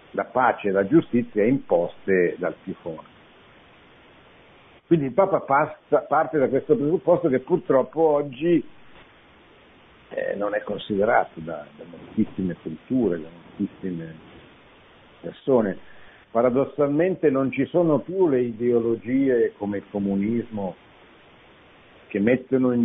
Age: 60-79